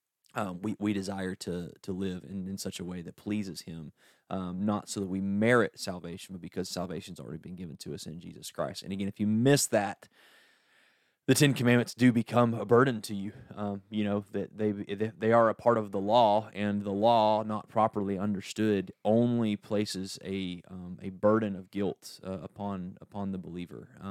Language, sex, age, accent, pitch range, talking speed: English, male, 20-39, American, 95-110 Hz, 195 wpm